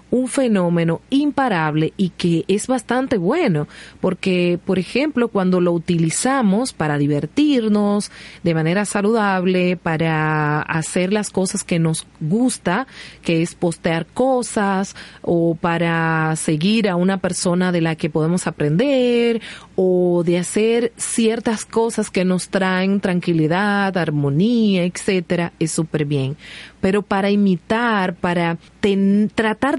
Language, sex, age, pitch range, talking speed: Spanish, female, 30-49, 170-205 Hz, 120 wpm